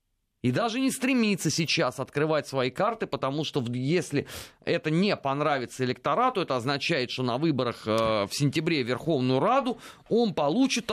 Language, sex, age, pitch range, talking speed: Russian, male, 30-49, 130-205 Hz, 145 wpm